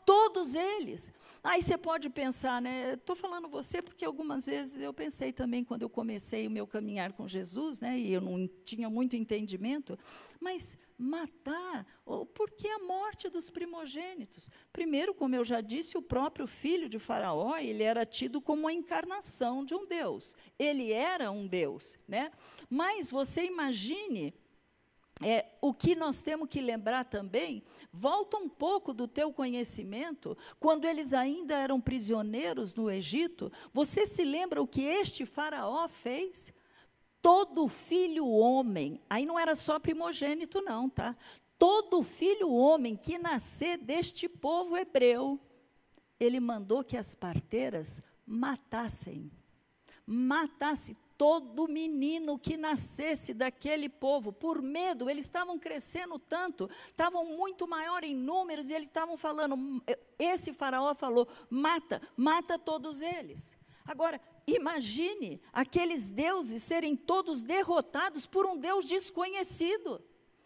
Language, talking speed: Portuguese, 135 wpm